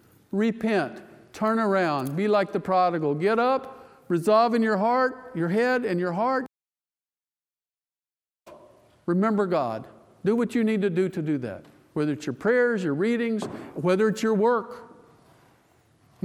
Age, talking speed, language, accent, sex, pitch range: 50-69, 150 wpm, English, American, male, 140-225 Hz